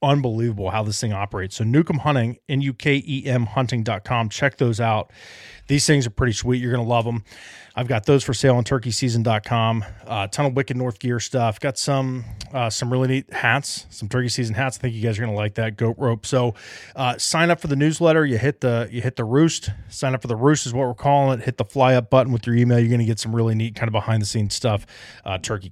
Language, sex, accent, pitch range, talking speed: English, male, American, 105-125 Hz, 245 wpm